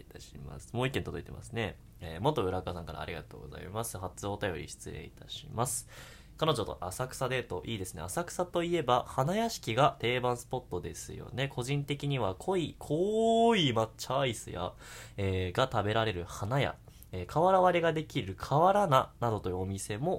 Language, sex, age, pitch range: Japanese, male, 20-39, 95-150 Hz